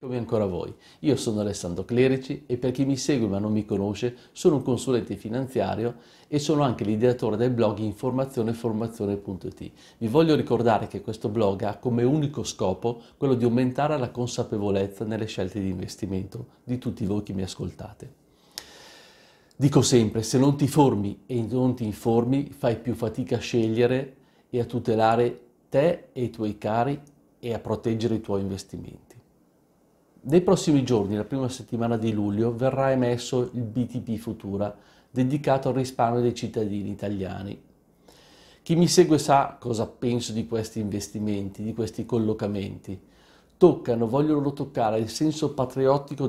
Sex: male